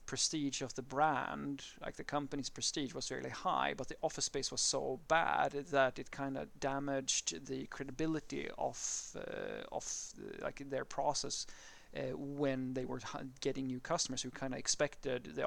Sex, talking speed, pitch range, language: male, 165 wpm, 130-140 Hz, English